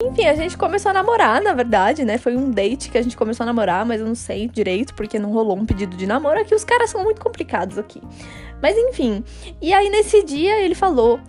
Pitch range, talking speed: 215-315 Hz, 240 wpm